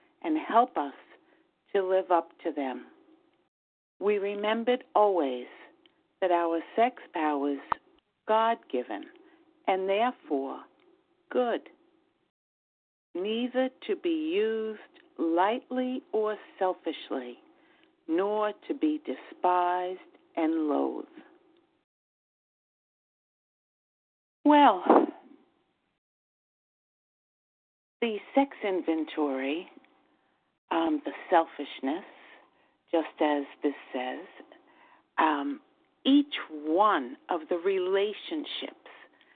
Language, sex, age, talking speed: English, female, 50-69, 75 wpm